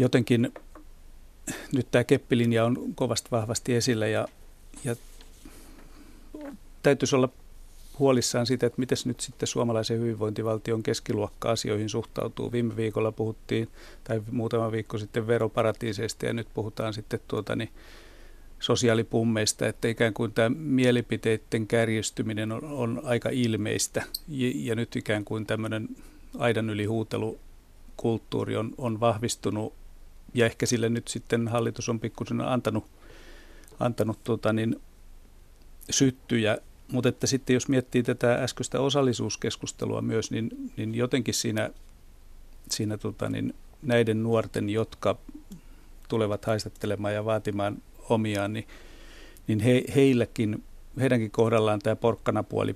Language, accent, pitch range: Finnish, native, 110-120 Hz